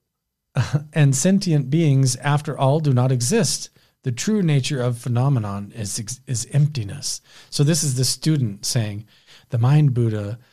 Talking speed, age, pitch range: 150 wpm, 40-59, 120-145 Hz